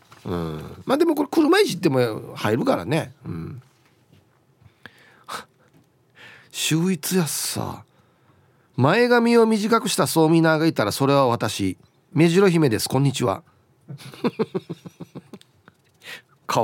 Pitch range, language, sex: 130-190 Hz, Japanese, male